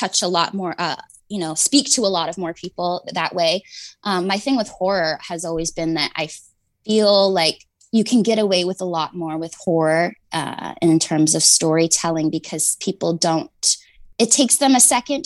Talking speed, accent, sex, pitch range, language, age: 200 wpm, American, female, 165-205 Hz, English, 20-39